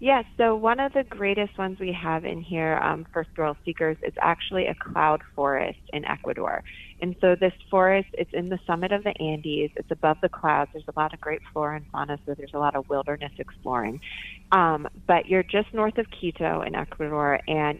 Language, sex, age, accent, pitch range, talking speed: English, female, 30-49, American, 145-180 Hz, 210 wpm